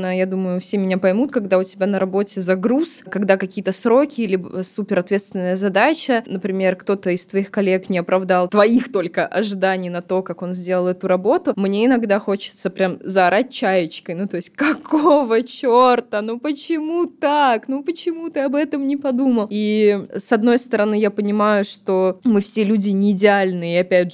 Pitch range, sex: 185-225 Hz, female